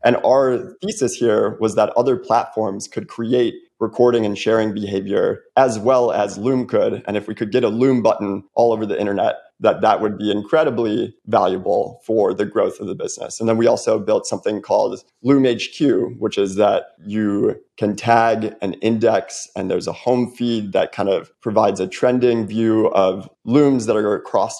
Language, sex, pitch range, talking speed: English, male, 105-120 Hz, 190 wpm